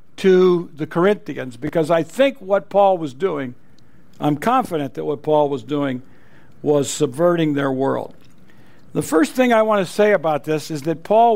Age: 60-79